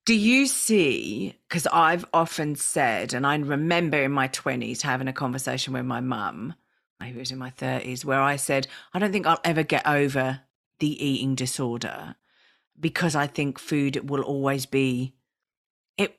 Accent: British